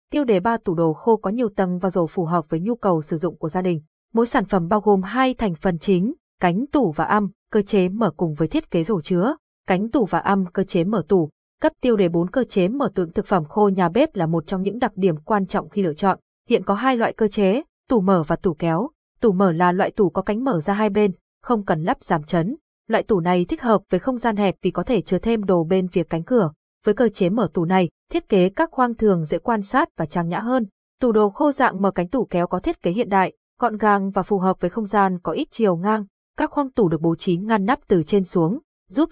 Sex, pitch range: female, 180-230 Hz